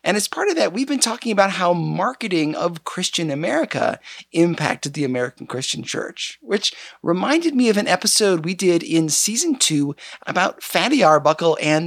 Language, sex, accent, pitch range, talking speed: English, male, American, 160-245 Hz, 170 wpm